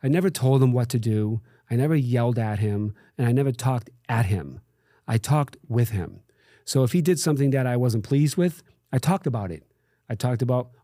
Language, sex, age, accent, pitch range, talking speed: English, male, 40-59, American, 120-150 Hz, 215 wpm